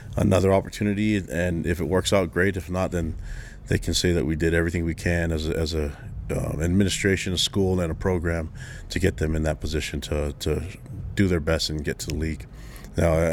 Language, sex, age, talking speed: English, male, 30-49, 215 wpm